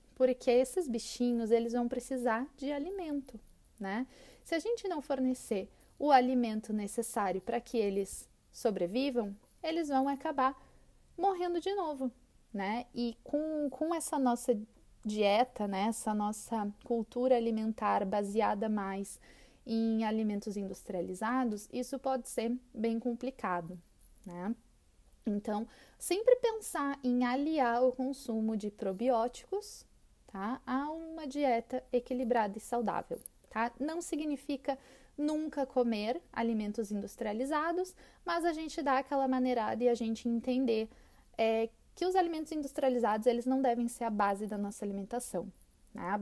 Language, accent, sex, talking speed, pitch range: Portuguese, Brazilian, female, 130 wpm, 220-275 Hz